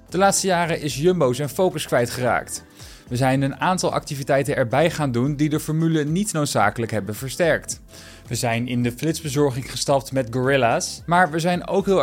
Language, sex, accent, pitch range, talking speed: Dutch, male, Dutch, 125-165 Hz, 180 wpm